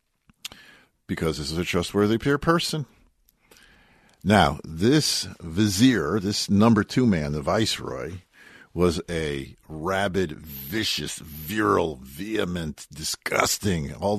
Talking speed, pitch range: 100 wpm, 75-105 Hz